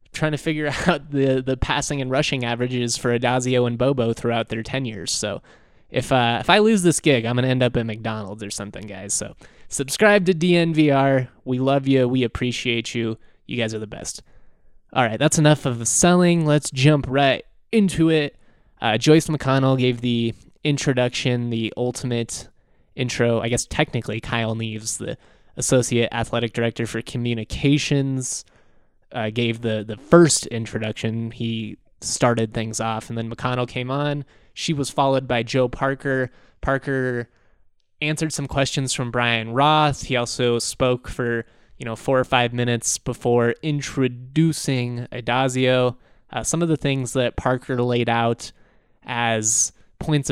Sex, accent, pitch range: male, American, 115-140 Hz